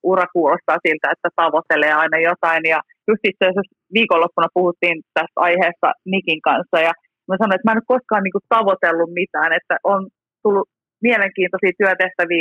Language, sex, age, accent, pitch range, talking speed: Finnish, female, 30-49, native, 165-190 Hz, 160 wpm